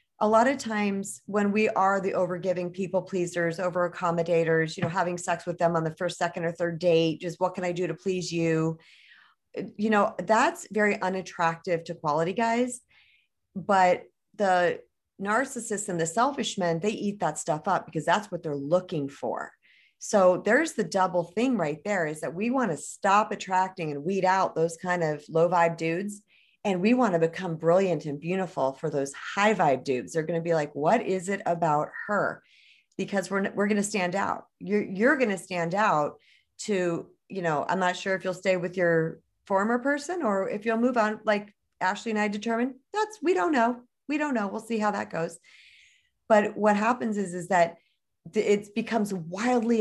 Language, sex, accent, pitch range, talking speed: English, female, American, 170-215 Hz, 195 wpm